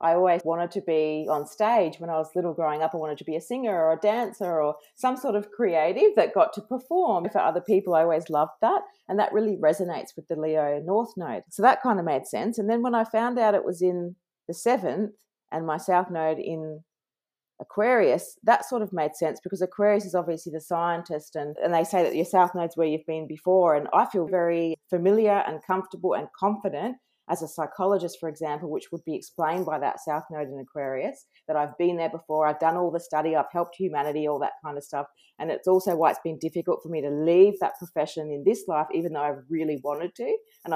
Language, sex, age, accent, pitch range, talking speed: English, female, 30-49, Australian, 155-195 Hz, 235 wpm